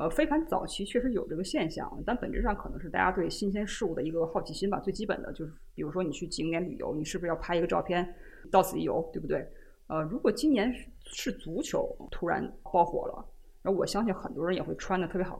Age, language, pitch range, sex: 20-39, Chinese, 180-230 Hz, female